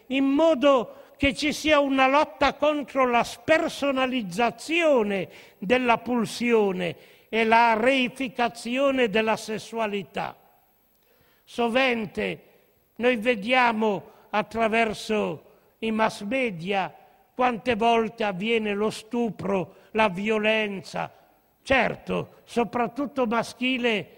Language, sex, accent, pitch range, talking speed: Italian, male, native, 225-275 Hz, 85 wpm